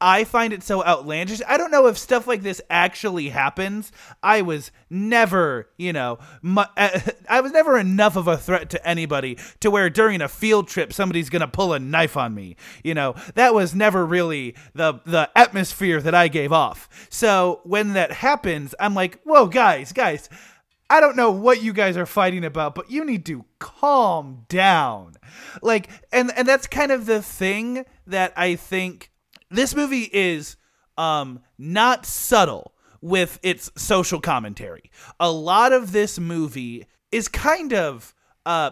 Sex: male